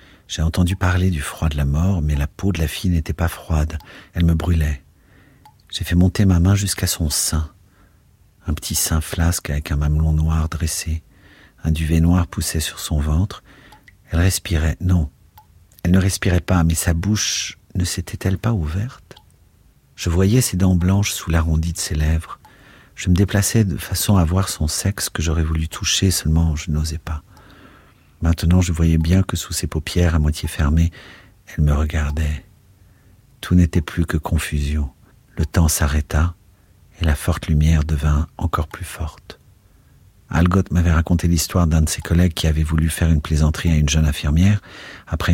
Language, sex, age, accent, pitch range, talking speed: French, male, 50-69, French, 80-95 Hz, 175 wpm